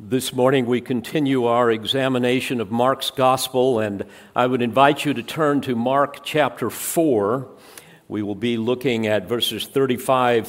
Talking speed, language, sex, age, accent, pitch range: 155 wpm, English, male, 50-69, American, 100-130 Hz